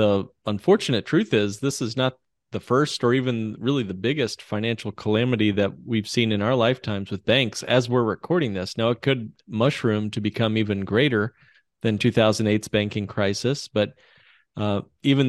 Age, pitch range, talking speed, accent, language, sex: 30-49, 110-130 Hz, 170 wpm, American, English, male